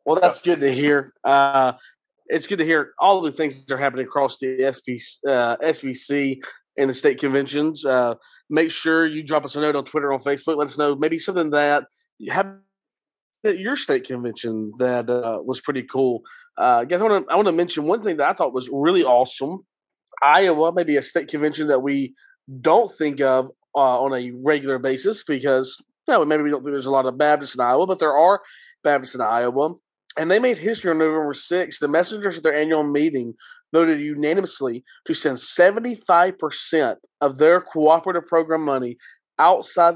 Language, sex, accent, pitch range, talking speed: English, male, American, 135-170 Hz, 195 wpm